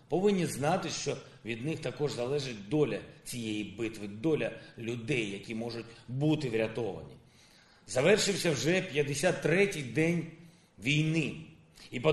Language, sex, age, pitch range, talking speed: Ukrainian, male, 40-59, 130-165 Hz, 115 wpm